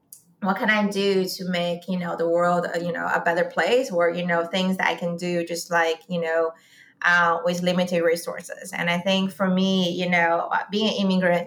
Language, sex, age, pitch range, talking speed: English, female, 20-39, 170-195 Hz, 215 wpm